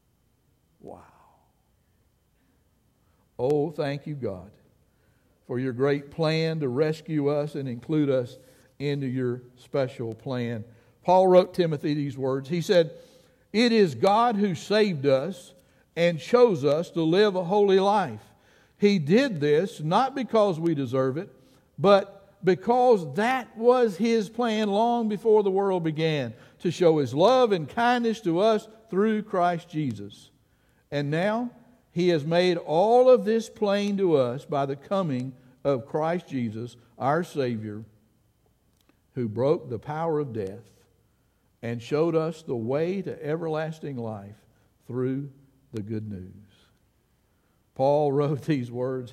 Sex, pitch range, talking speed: male, 125-190 Hz, 135 wpm